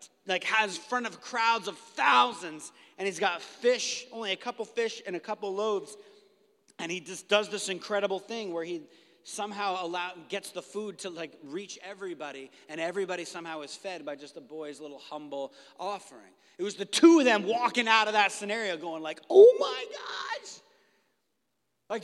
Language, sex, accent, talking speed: English, male, American, 180 wpm